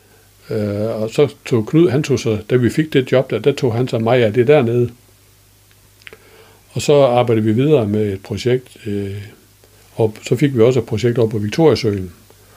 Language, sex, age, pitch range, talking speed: Danish, male, 60-79, 100-125 Hz, 195 wpm